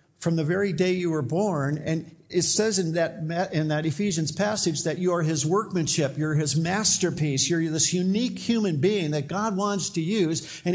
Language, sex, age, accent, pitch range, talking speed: English, male, 50-69, American, 150-195 Hz, 195 wpm